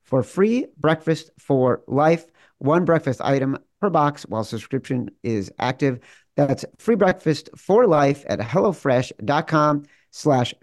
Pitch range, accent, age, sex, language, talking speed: 120-155 Hz, American, 50-69, male, English, 125 wpm